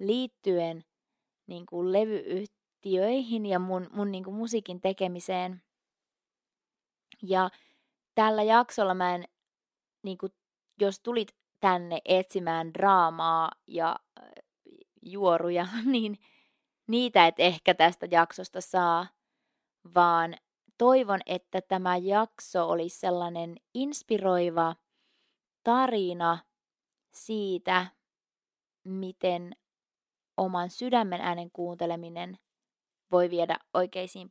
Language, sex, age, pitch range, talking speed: Finnish, female, 20-39, 175-220 Hz, 90 wpm